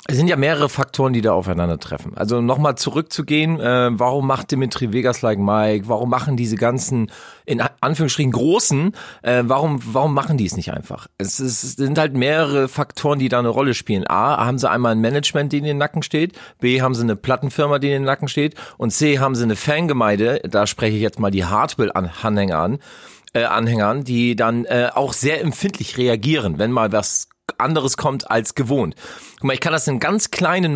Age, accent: 40-59, German